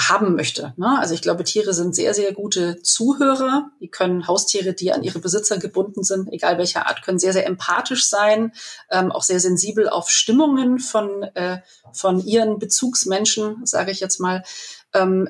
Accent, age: German, 30-49